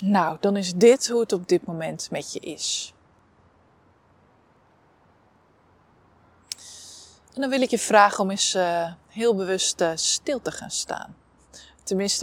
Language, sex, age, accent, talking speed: English, female, 20-39, Dutch, 130 wpm